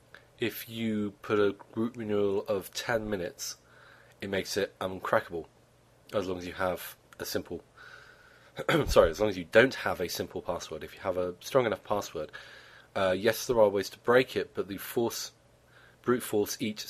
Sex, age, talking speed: male, 30-49, 180 wpm